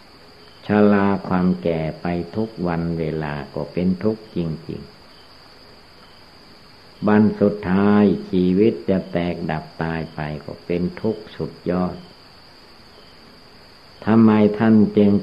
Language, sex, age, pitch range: Thai, male, 60-79, 80-100 Hz